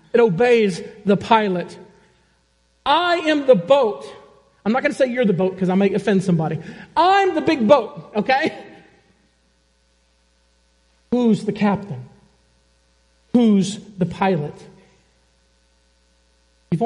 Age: 40-59